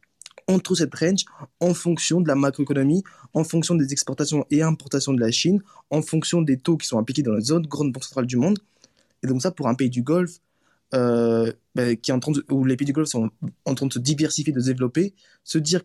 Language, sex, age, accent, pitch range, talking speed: French, male, 20-39, French, 130-165 Hz, 240 wpm